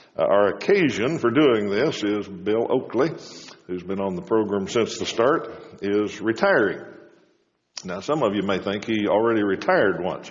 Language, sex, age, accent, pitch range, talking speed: English, male, 60-79, American, 95-115 Hz, 165 wpm